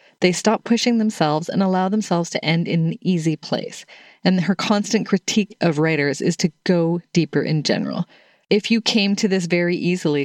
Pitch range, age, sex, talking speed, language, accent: 155-195 Hz, 30-49, female, 185 wpm, English, American